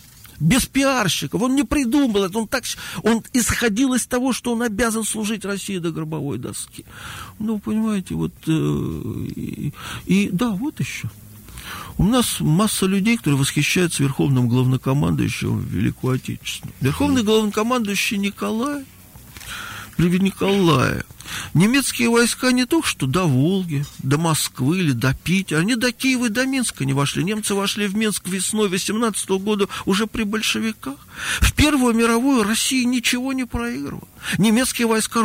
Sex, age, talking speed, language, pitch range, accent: male, 50-69, 140 wpm, Russian, 170-240 Hz, native